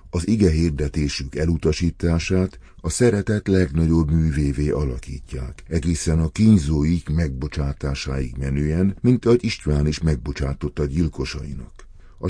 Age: 60-79